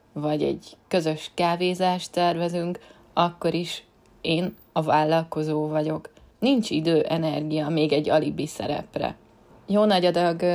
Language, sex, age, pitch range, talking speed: Hungarian, female, 20-39, 155-175 Hz, 115 wpm